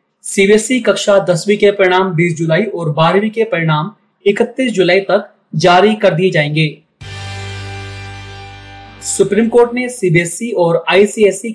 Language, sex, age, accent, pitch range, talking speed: Hindi, male, 30-49, native, 165-200 Hz, 125 wpm